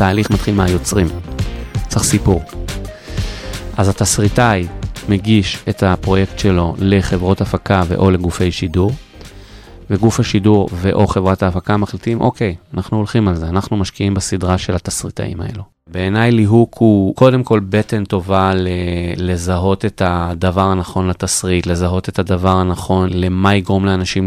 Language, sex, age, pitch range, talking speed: Hebrew, male, 30-49, 90-105 Hz, 130 wpm